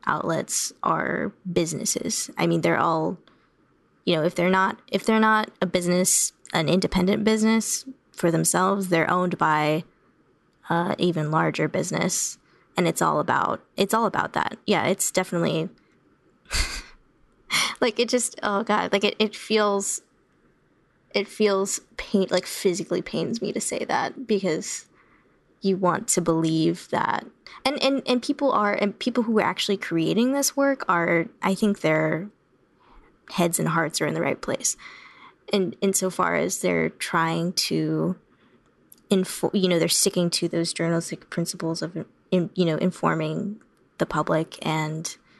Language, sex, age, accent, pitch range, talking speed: English, female, 10-29, American, 165-205 Hz, 150 wpm